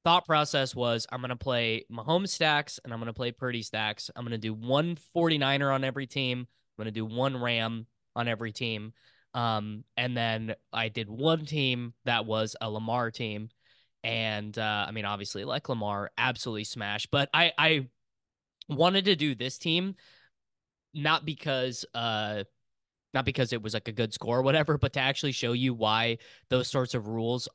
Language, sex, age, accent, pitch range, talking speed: English, male, 10-29, American, 115-140 Hz, 185 wpm